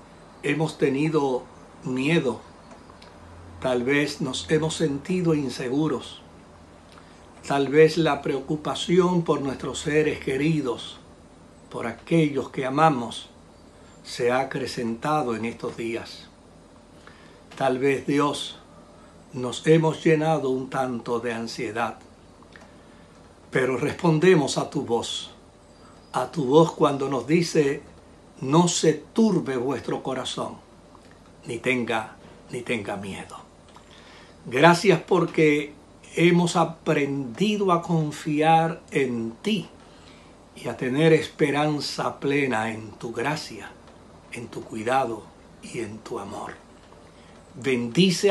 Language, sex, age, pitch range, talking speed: Spanish, male, 60-79, 115-160 Hz, 100 wpm